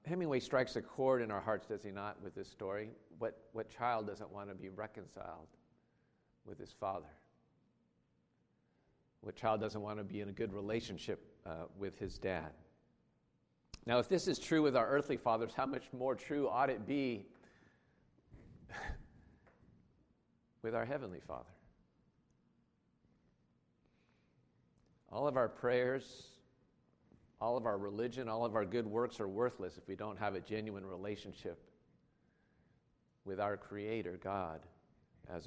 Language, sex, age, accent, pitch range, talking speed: English, male, 50-69, American, 100-135 Hz, 145 wpm